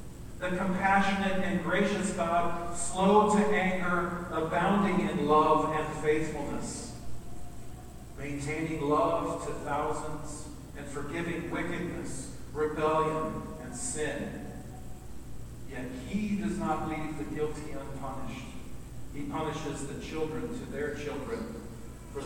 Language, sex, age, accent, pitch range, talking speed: English, male, 40-59, American, 140-165 Hz, 105 wpm